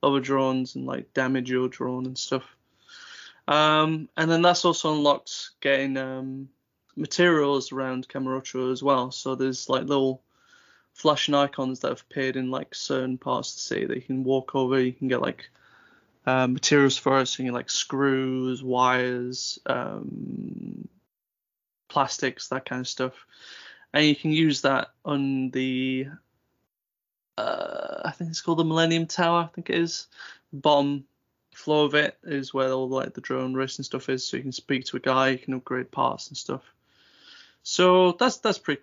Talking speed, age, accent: 175 wpm, 20-39, British